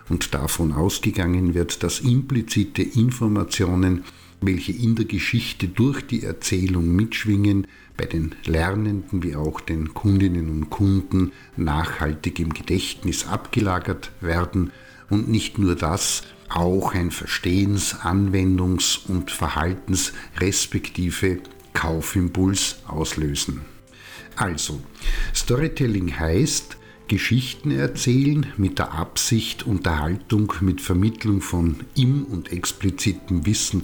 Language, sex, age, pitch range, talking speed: German, male, 50-69, 85-110 Hz, 100 wpm